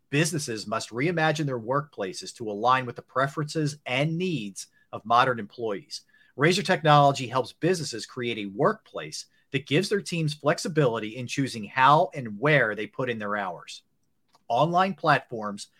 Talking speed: 150 wpm